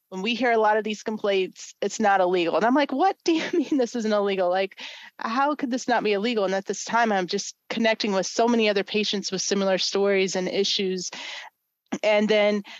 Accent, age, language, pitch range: American, 30-49, English, 185-230 Hz